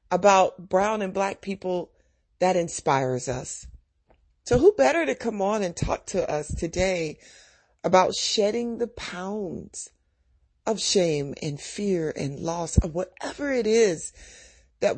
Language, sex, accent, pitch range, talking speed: English, female, American, 140-200 Hz, 135 wpm